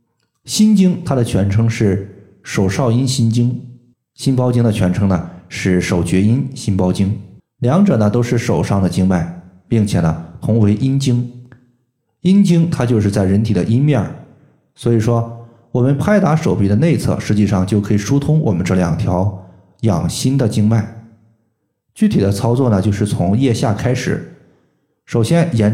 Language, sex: Chinese, male